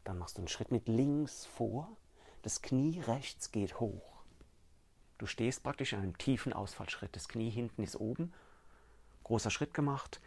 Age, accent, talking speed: 40-59, German, 165 wpm